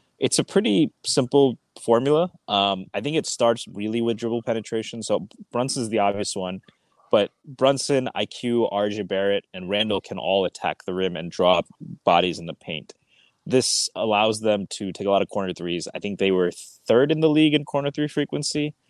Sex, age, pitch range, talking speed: male, 20-39, 95-120 Hz, 190 wpm